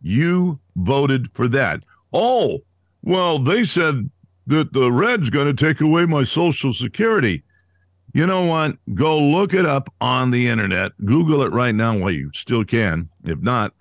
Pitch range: 100-140 Hz